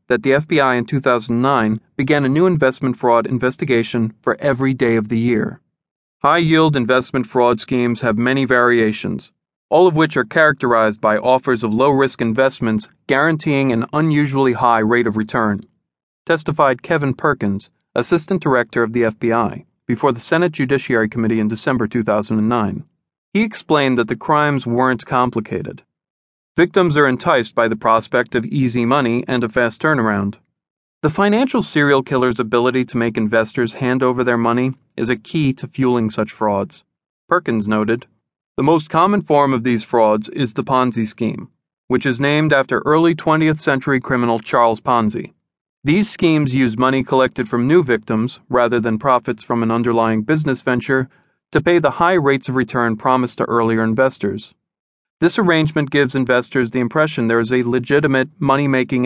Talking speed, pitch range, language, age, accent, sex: 160 wpm, 115-140 Hz, English, 40-59, American, male